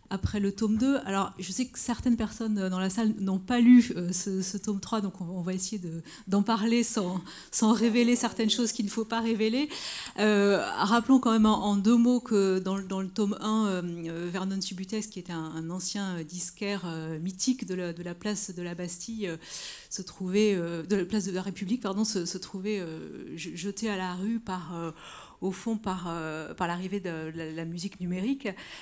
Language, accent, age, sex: French, French, 30-49, female